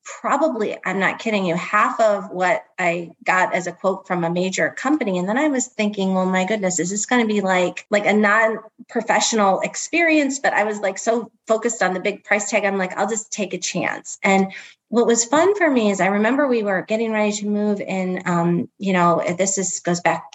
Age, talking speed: 30-49, 225 wpm